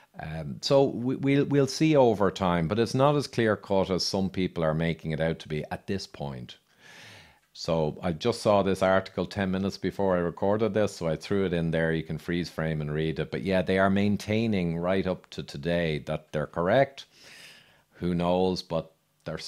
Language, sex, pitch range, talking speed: English, male, 85-110 Hz, 205 wpm